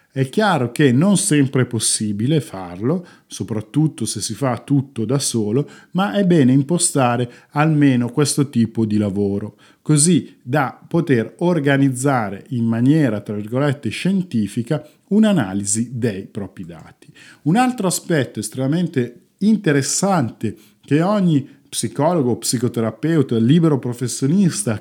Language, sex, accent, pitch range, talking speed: Italian, male, native, 115-155 Hz, 115 wpm